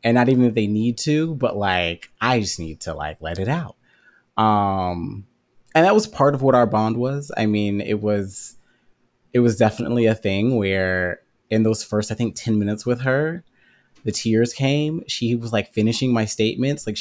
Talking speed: 200 wpm